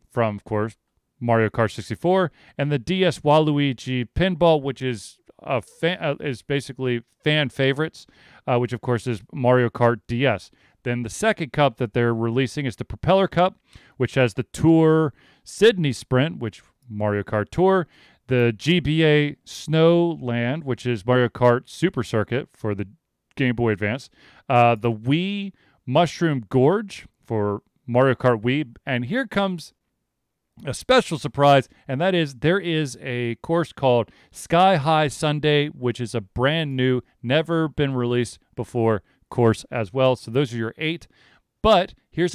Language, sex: English, male